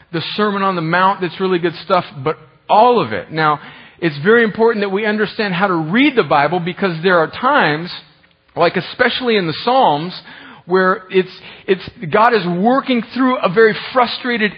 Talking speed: 180 wpm